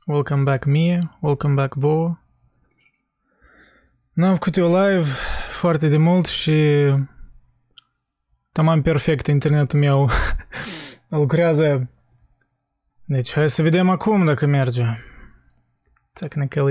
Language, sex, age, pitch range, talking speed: Romanian, male, 20-39, 130-160 Hz, 100 wpm